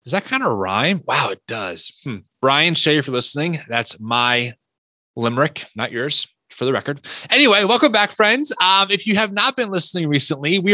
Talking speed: 200 wpm